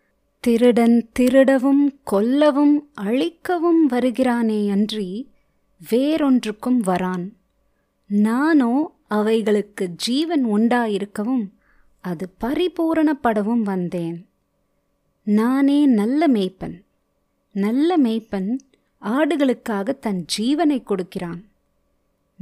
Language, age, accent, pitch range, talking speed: Tamil, 20-39, native, 210-280 Hz, 65 wpm